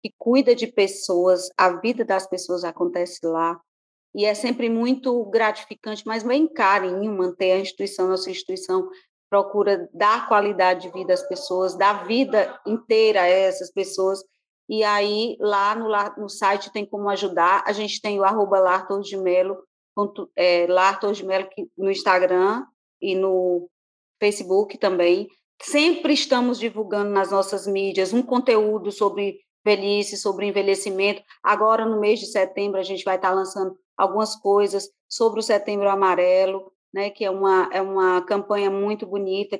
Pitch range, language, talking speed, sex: 195-225 Hz, Portuguese, 140 wpm, female